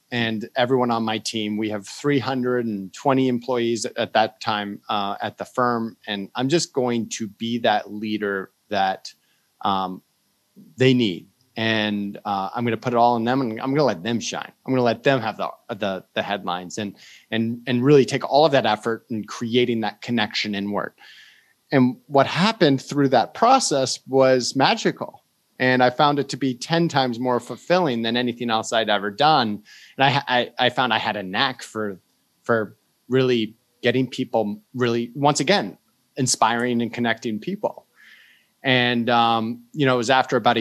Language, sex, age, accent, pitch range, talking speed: English, male, 30-49, American, 105-130 Hz, 180 wpm